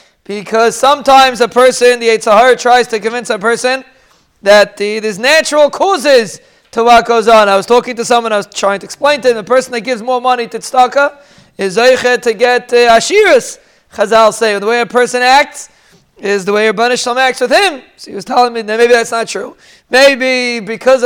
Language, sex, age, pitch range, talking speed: English, male, 20-39, 230-265 Hz, 200 wpm